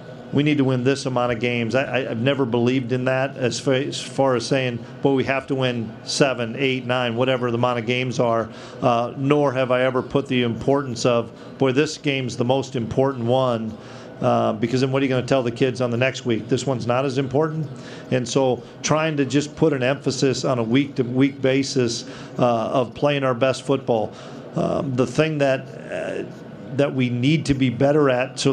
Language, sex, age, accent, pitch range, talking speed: English, male, 50-69, American, 125-135 Hz, 210 wpm